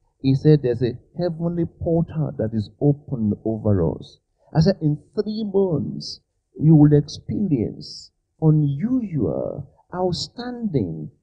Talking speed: 110 wpm